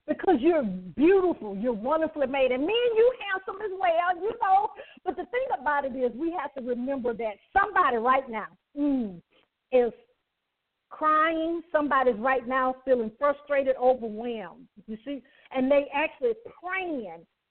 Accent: American